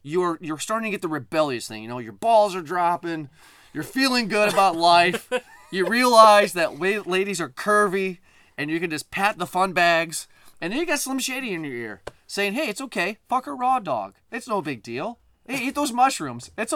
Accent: American